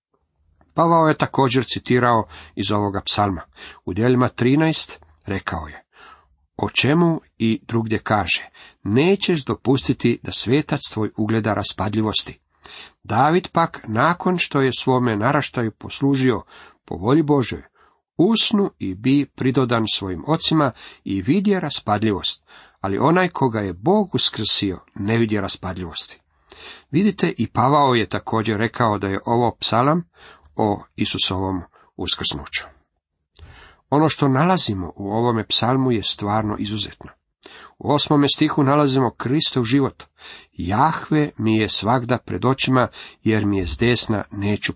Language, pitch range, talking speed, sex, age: Croatian, 100-140 Hz, 125 wpm, male, 50-69